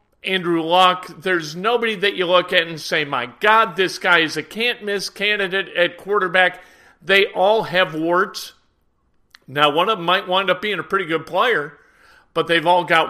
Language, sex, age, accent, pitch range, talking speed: English, male, 50-69, American, 170-205 Hz, 190 wpm